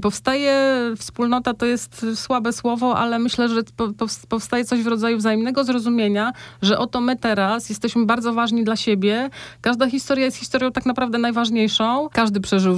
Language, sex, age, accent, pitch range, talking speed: Polish, female, 30-49, native, 195-245 Hz, 155 wpm